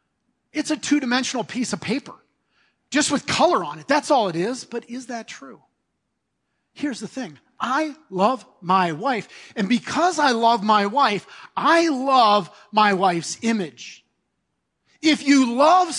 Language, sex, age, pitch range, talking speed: English, male, 40-59, 235-315 Hz, 150 wpm